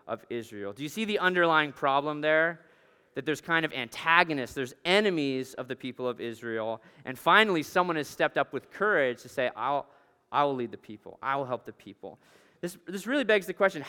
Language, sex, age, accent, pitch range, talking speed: English, male, 30-49, American, 145-200 Hz, 195 wpm